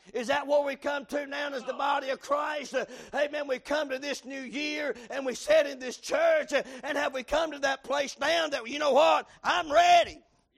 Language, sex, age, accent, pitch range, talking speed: English, male, 50-69, American, 250-325 Hz, 235 wpm